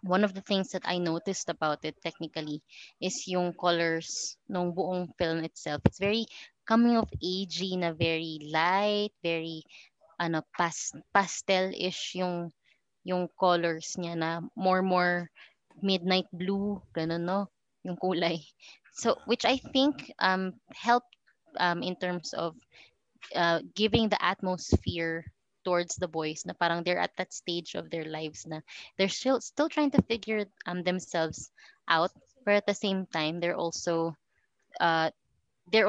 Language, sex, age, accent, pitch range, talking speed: English, female, 20-39, Filipino, 165-200 Hz, 145 wpm